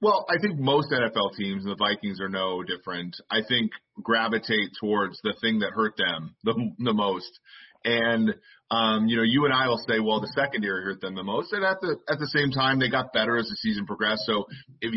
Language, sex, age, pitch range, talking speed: English, male, 30-49, 105-120 Hz, 225 wpm